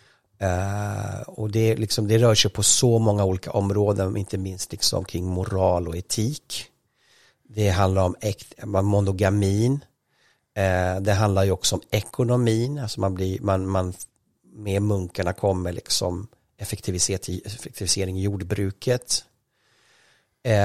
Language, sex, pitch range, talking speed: English, male, 95-115 Hz, 120 wpm